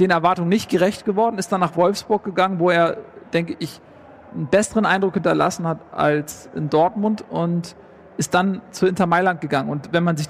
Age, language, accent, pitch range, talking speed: 40-59, German, German, 165-190 Hz, 190 wpm